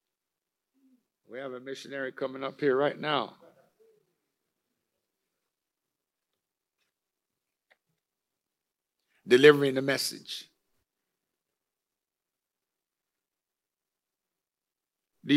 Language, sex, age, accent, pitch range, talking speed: English, male, 60-79, American, 125-150 Hz, 50 wpm